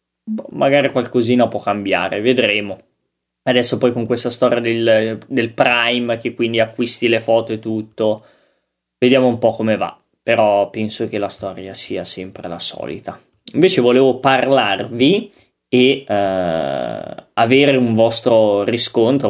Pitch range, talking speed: 110-130 Hz, 135 wpm